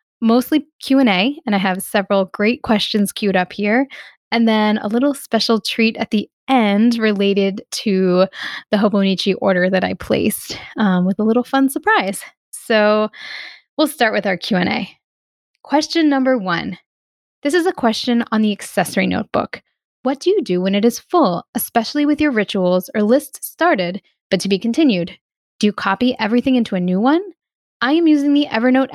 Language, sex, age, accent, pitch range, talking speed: English, female, 10-29, American, 195-260 Hz, 170 wpm